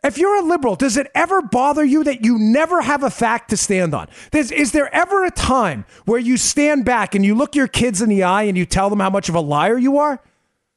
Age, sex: 40-59, male